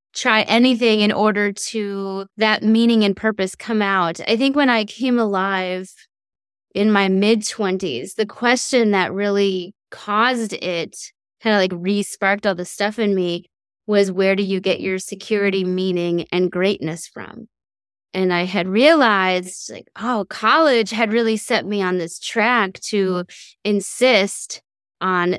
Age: 20-39